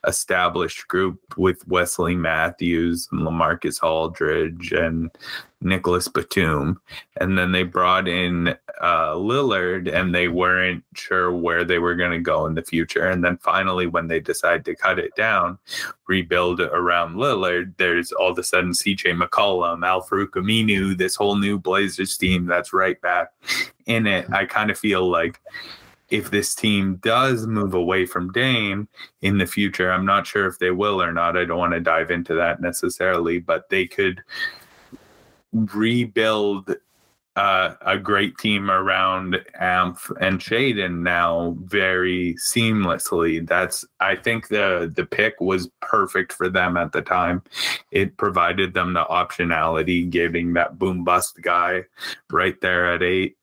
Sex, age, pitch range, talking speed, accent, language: male, 20-39, 85-95 Hz, 155 wpm, American, English